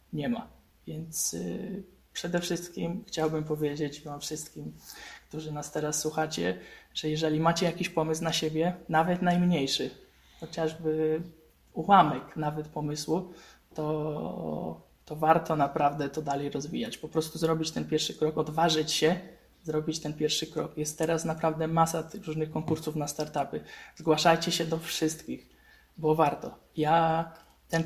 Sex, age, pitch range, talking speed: male, 20-39, 155-165 Hz, 135 wpm